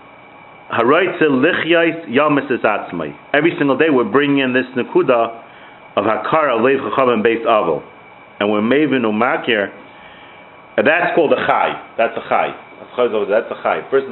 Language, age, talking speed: English, 40-59, 125 wpm